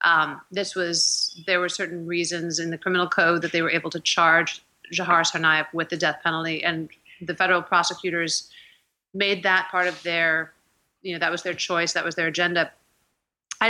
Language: English